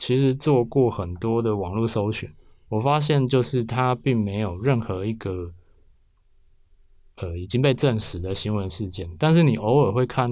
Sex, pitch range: male, 95-130 Hz